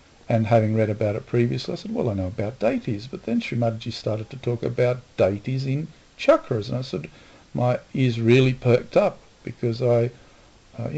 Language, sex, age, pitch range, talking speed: English, male, 50-69, 110-135 Hz, 185 wpm